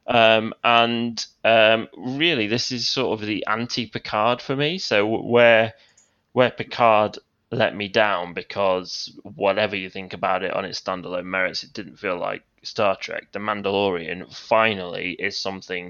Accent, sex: British, male